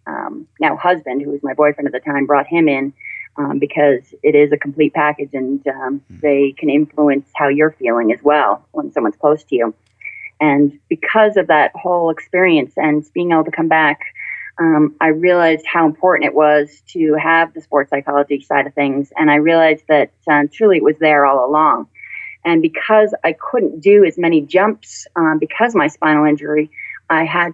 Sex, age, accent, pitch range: female, 30-49, American, 145-165 Hz